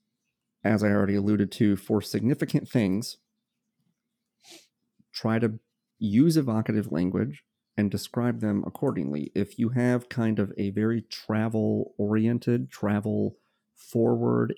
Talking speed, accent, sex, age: 115 wpm, American, male, 30-49